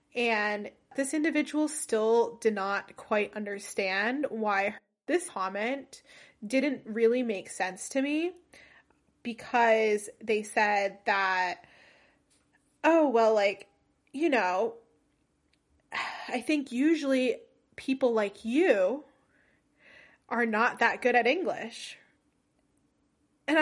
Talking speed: 100 wpm